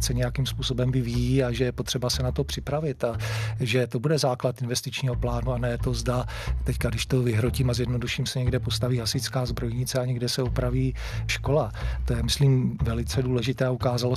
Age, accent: 40-59, native